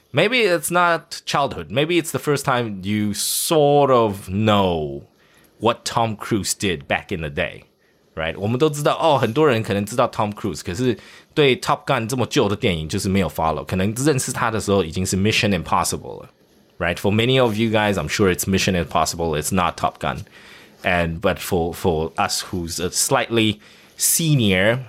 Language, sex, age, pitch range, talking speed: English, male, 20-39, 95-130 Hz, 135 wpm